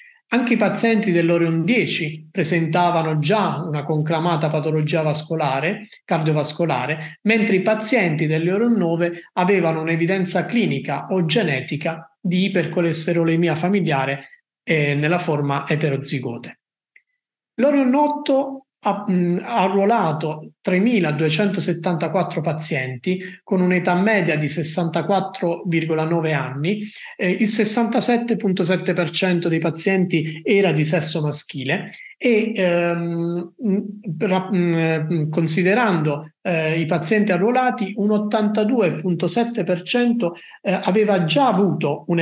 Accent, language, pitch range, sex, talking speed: Italian, English, 160-200 Hz, male, 90 wpm